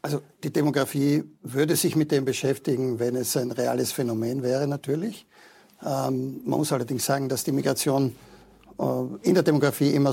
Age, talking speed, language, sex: 50-69, 165 wpm, German, male